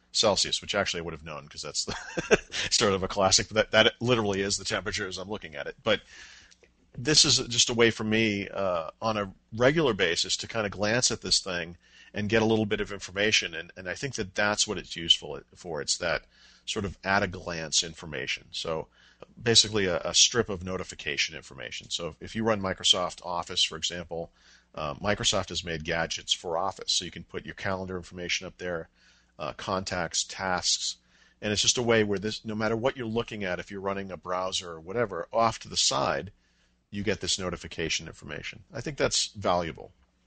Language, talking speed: English, 205 wpm